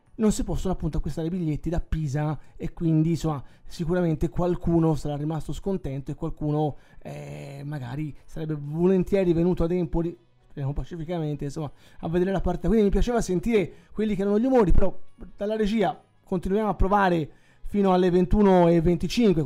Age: 20-39